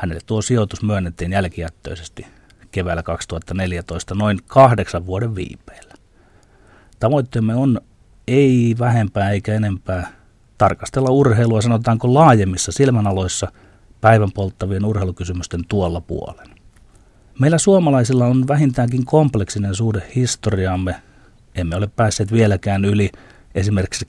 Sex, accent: male, native